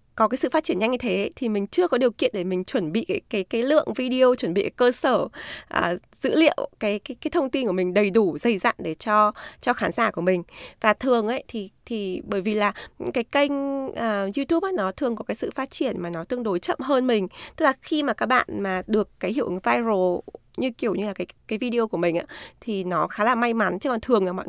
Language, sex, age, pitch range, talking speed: Vietnamese, female, 20-39, 200-255 Hz, 270 wpm